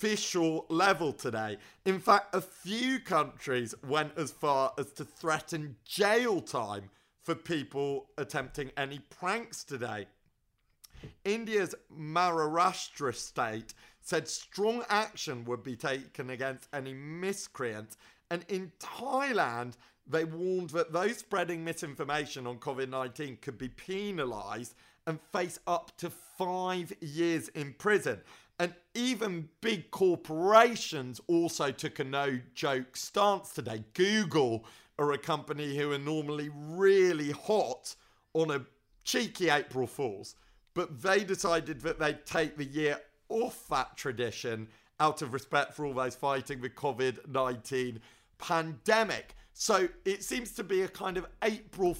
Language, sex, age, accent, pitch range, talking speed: English, male, 40-59, British, 135-185 Hz, 125 wpm